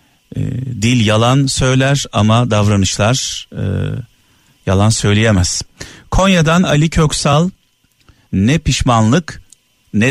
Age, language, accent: 50-69, Turkish, native